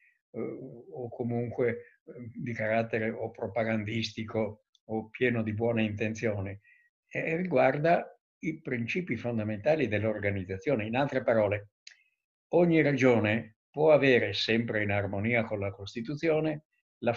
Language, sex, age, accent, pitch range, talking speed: Italian, male, 60-79, native, 110-145 Hz, 105 wpm